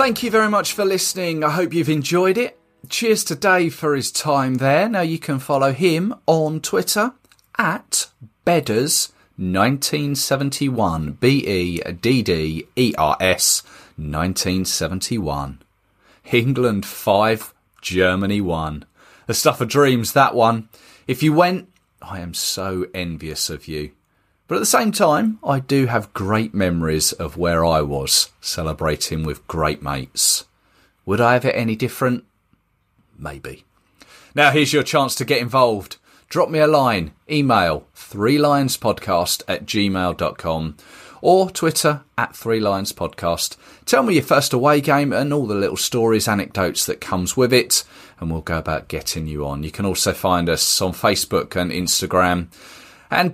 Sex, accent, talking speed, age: male, British, 145 wpm, 30-49